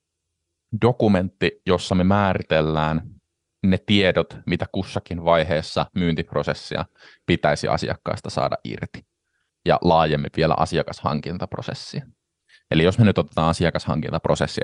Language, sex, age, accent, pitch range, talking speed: Finnish, male, 20-39, native, 80-95 Hz, 100 wpm